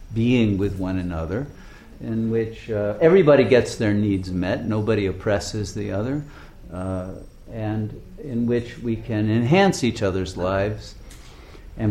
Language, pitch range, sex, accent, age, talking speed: English, 95-130 Hz, male, American, 50-69, 135 wpm